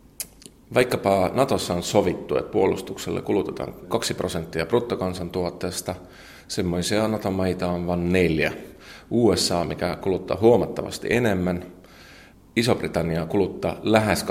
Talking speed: 95 wpm